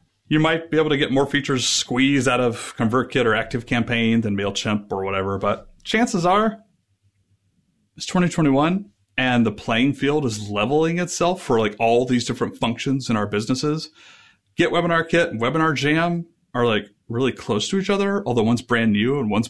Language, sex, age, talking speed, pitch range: English, male, 30-49, 170 wpm, 100-165 Hz